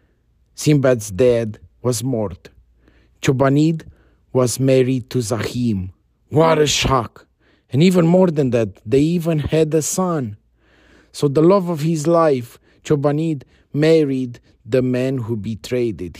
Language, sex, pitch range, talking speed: English, male, 105-150 Hz, 125 wpm